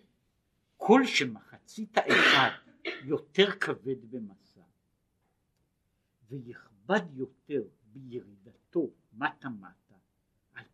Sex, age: male, 60-79